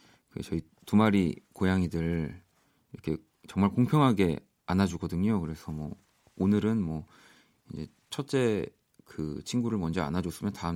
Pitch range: 90-125 Hz